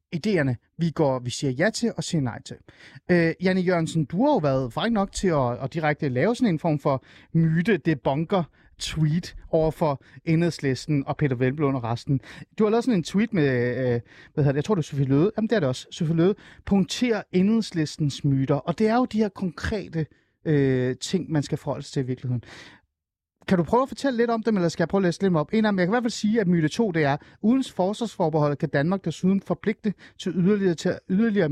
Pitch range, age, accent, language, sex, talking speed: 140-195 Hz, 30-49, native, Danish, male, 215 wpm